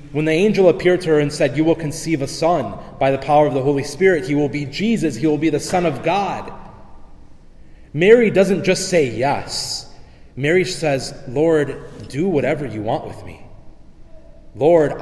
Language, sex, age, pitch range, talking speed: English, male, 30-49, 135-165 Hz, 185 wpm